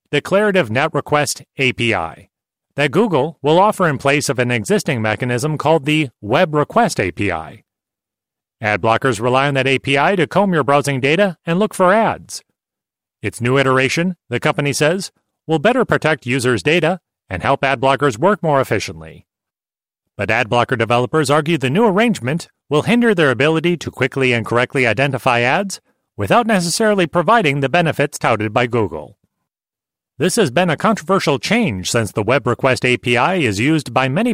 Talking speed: 165 wpm